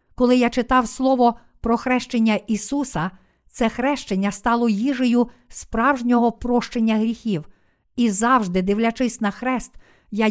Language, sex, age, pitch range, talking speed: Ukrainian, female, 50-69, 190-245 Hz, 115 wpm